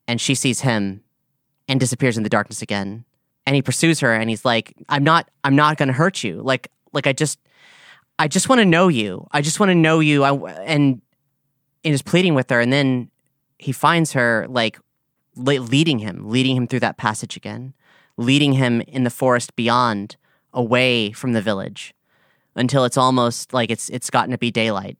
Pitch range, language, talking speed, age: 115-140 Hz, English, 200 wpm, 30-49